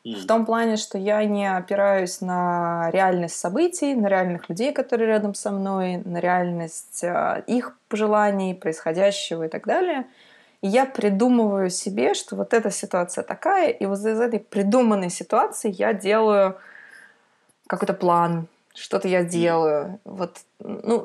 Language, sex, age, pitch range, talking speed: Russian, female, 20-39, 175-215 Hz, 145 wpm